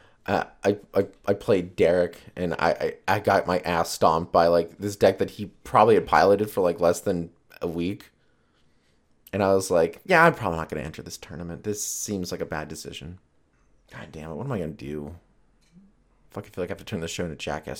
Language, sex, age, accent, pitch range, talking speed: English, male, 30-49, American, 80-105 Hz, 235 wpm